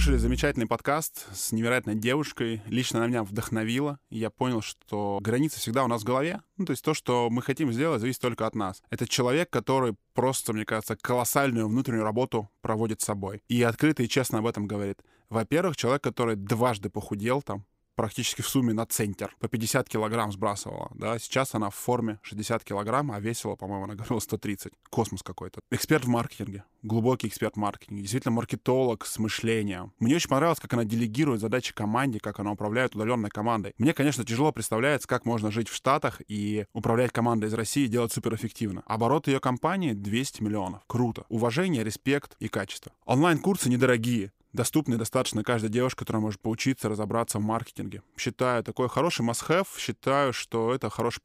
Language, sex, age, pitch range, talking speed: Russian, male, 10-29, 110-130 Hz, 175 wpm